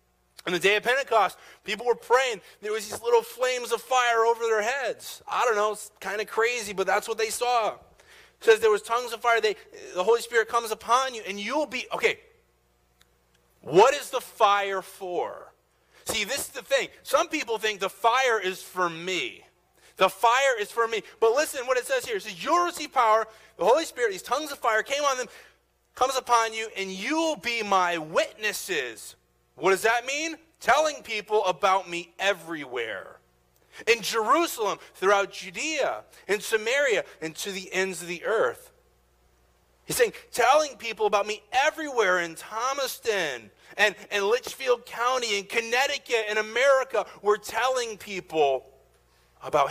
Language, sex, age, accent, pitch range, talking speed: English, male, 30-49, American, 185-285 Hz, 175 wpm